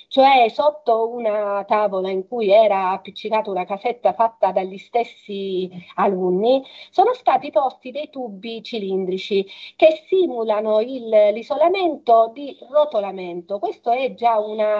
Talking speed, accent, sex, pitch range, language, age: 120 wpm, native, female, 200-280 Hz, Italian, 40-59